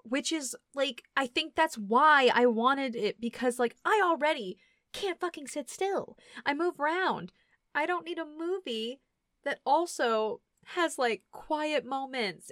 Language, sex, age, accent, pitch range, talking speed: English, female, 20-39, American, 215-310 Hz, 155 wpm